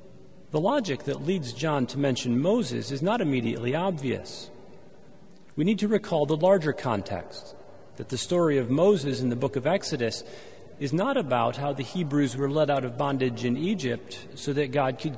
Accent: American